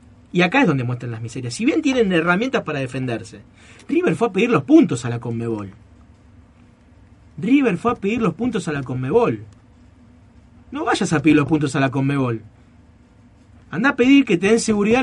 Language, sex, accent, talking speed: Spanish, male, Argentinian, 190 wpm